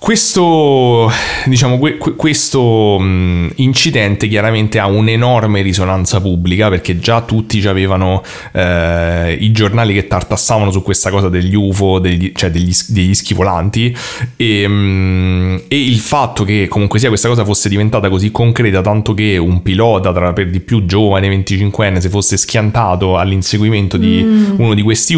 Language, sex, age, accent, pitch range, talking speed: Italian, male, 30-49, native, 95-115 Hz, 145 wpm